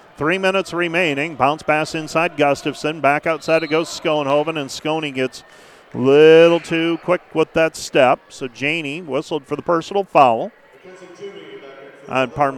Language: English